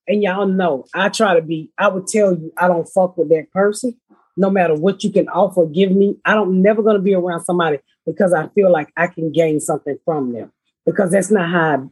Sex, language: female, English